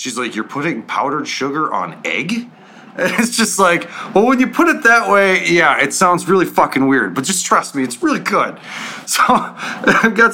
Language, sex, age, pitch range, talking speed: English, male, 30-49, 90-140 Hz, 205 wpm